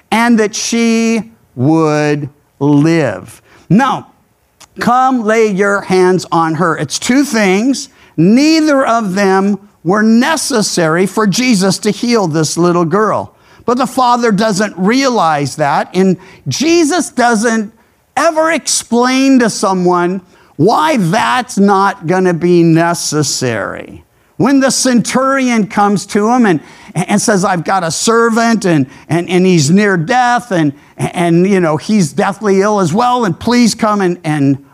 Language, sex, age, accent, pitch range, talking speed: English, male, 50-69, American, 180-240 Hz, 140 wpm